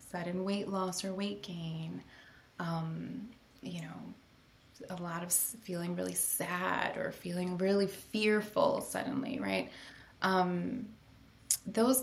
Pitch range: 170-195 Hz